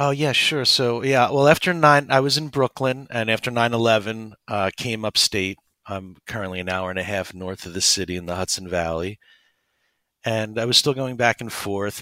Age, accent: 50-69, American